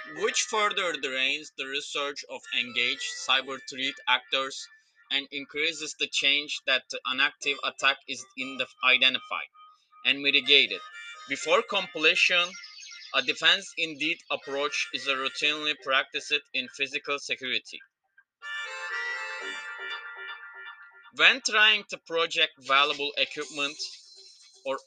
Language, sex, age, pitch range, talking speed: English, male, 20-39, 135-215 Hz, 100 wpm